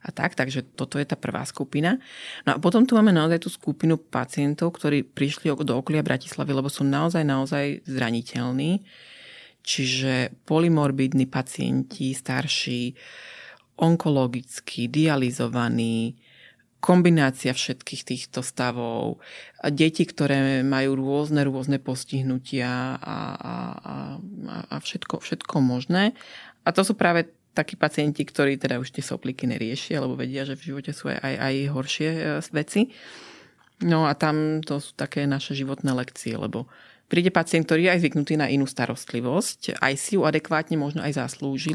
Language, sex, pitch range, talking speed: Slovak, female, 130-155 Hz, 145 wpm